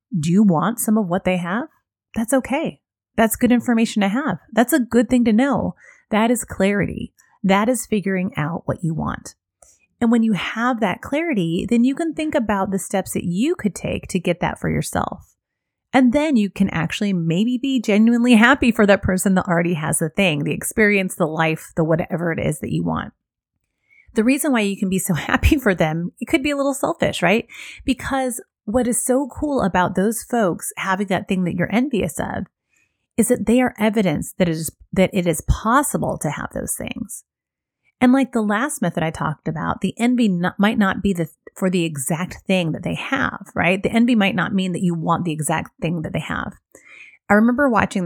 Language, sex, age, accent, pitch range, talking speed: English, female, 30-49, American, 175-240 Hz, 210 wpm